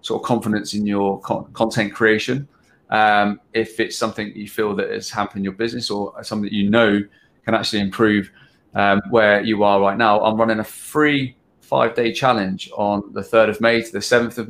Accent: British